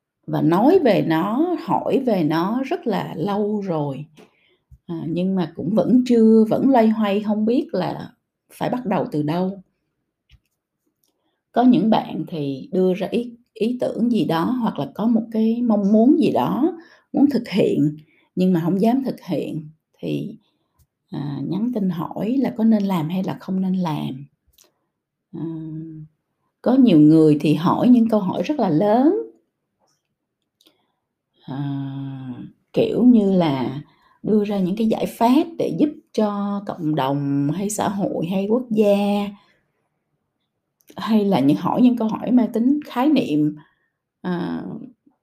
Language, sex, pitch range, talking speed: Vietnamese, female, 160-230 Hz, 150 wpm